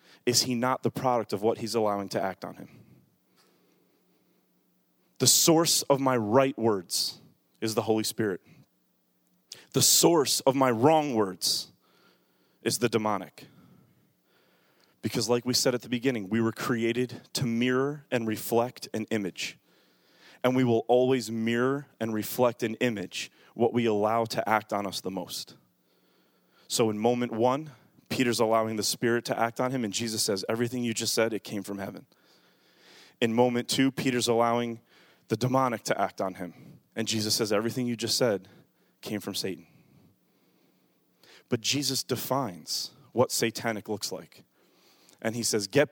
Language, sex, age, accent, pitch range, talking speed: English, male, 30-49, American, 110-125 Hz, 160 wpm